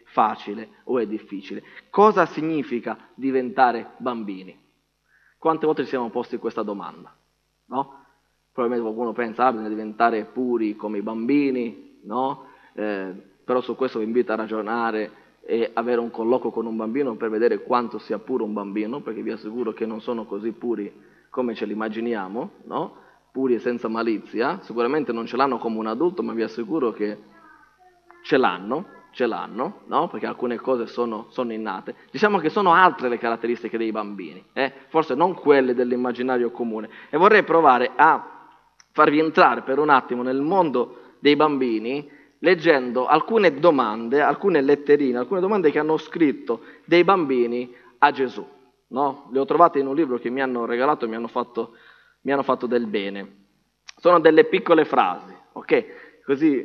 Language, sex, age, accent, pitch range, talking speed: Italian, male, 20-39, native, 115-145 Hz, 160 wpm